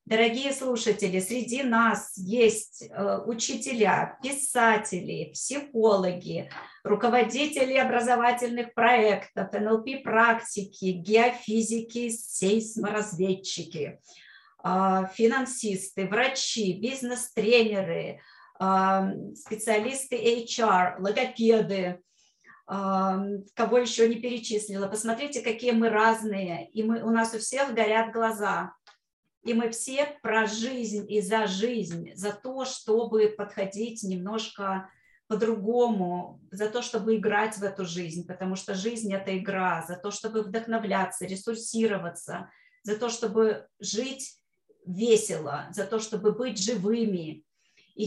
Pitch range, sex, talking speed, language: 195-235 Hz, female, 100 wpm, Russian